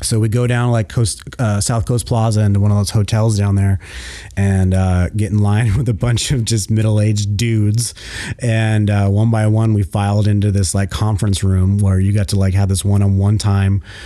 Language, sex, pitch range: English, male, 100-120 Hz